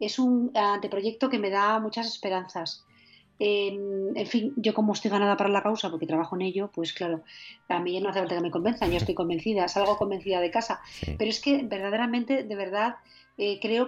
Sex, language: female, Spanish